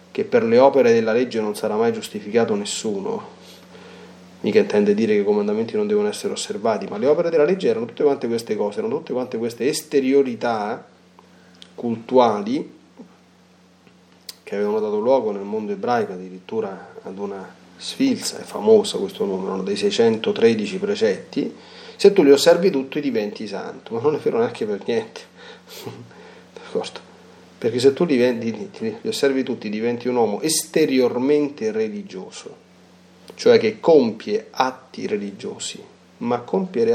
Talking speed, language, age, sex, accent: 145 wpm, Italian, 30-49, male, native